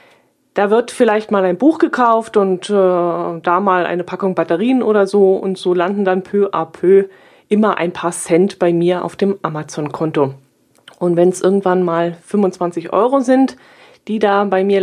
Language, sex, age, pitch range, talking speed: German, female, 30-49, 175-215 Hz, 180 wpm